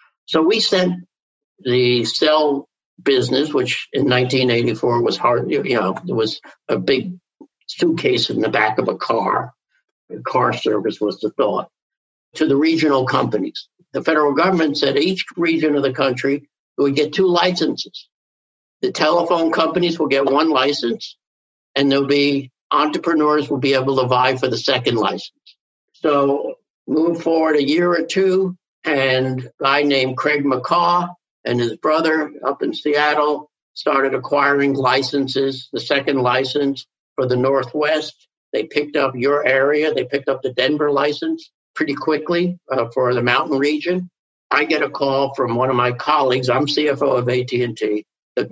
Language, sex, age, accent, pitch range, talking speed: English, male, 60-79, American, 130-155 Hz, 155 wpm